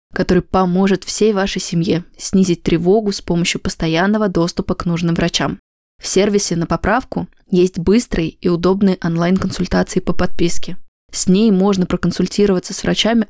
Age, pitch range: 20-39, 170-200 Hz